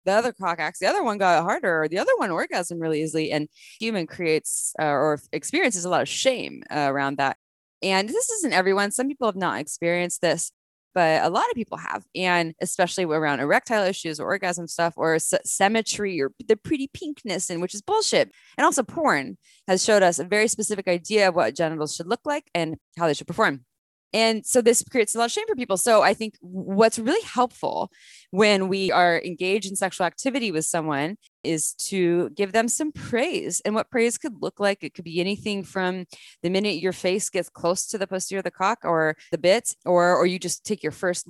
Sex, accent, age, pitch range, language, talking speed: female, American, 20-39, 170-225 Hz, English, 215 wpm